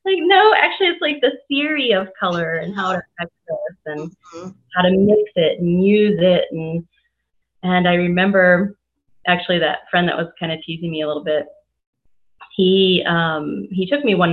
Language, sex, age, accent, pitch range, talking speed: English, female, 30-49, American, 165-205 Hz, 180 wpm